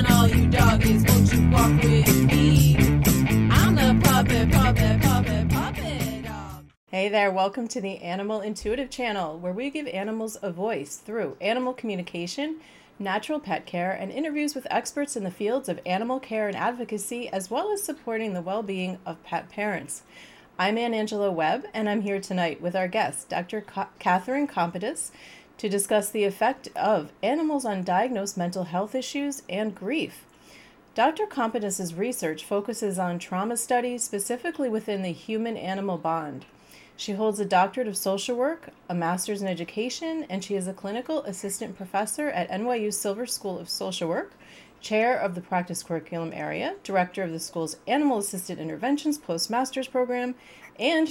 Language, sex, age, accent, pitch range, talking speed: English, female, 30-49, American, 175-235 Hz, 145 wpm